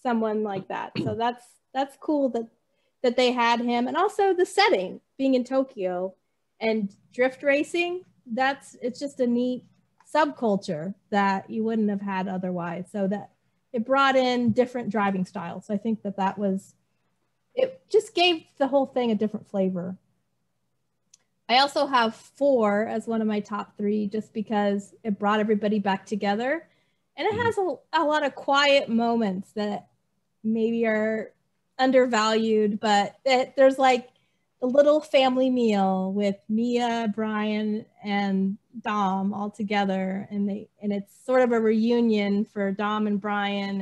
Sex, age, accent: female, 30-49, American